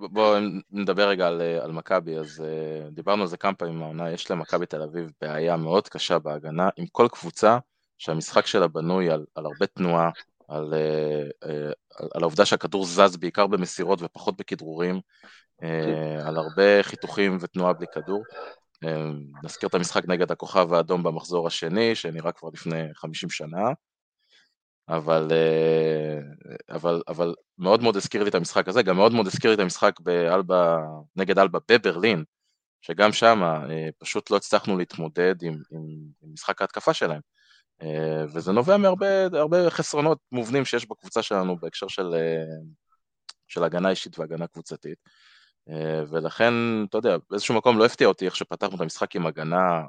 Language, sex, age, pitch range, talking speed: Hebrew, male, 20-39, 80-100 Hz, 150 wpm